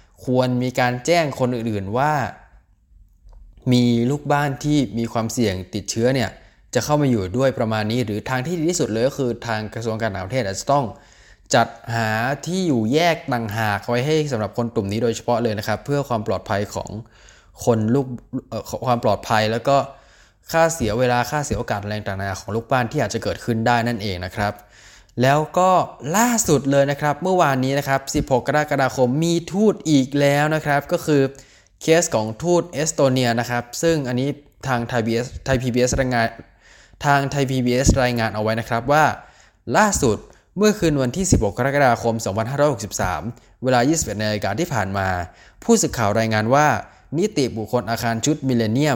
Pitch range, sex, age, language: 110-145 Hz, male, 20-39, Thai